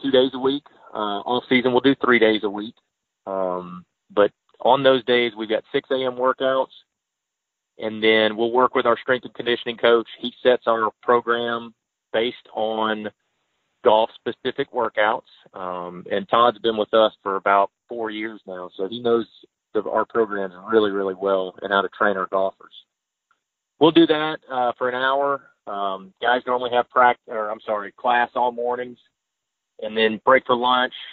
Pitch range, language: 105-125 Hz, English